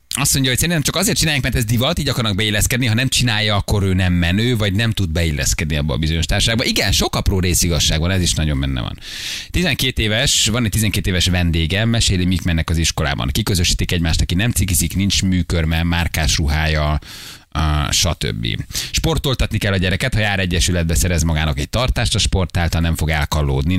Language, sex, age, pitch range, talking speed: Hungarian, male, 30-49, 80-110 Hz, 195 wpm